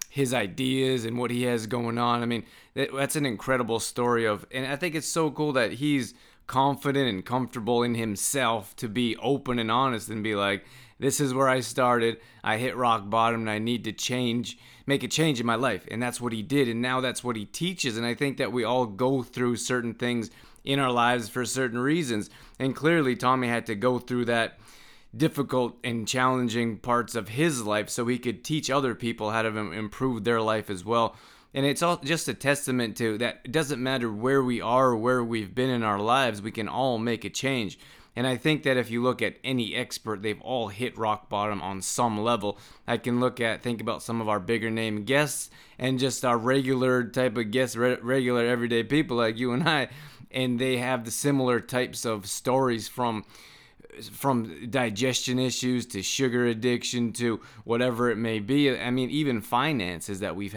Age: 20-39